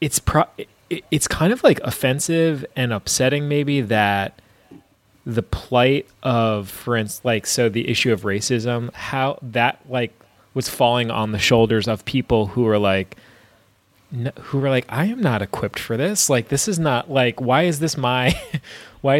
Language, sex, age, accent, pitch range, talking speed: English, male, 20-39, American, 105-130 Hz, 170 wpm